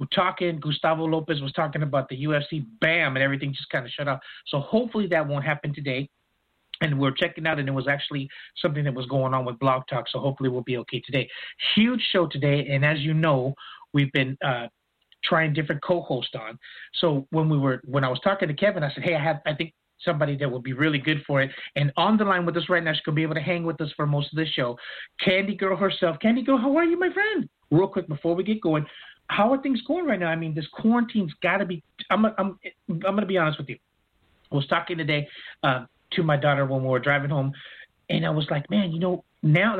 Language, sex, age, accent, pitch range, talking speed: English, male, 30-49, American, 140-185 Hz, 250 wpm